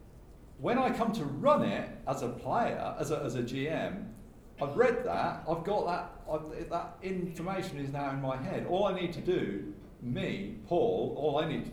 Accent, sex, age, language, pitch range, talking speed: British, male, 50-69, English, 115-175 Hz, 200 wpm